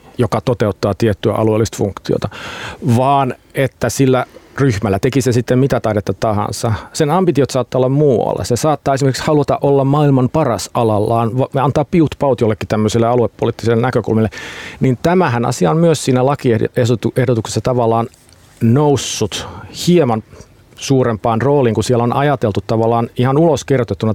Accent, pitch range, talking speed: native, 110-135 Hz, 140 wpm